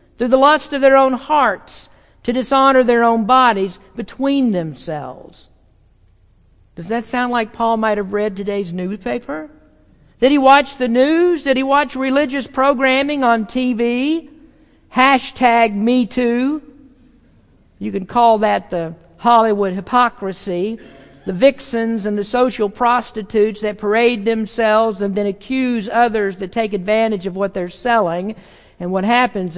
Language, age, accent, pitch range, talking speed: English, 50-69, American, 190-255 Hz, 140 wpm